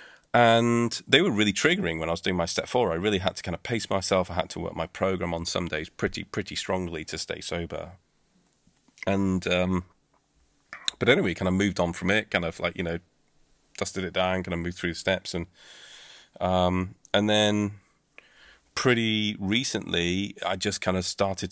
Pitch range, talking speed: 85-100 Hz, 195 wpm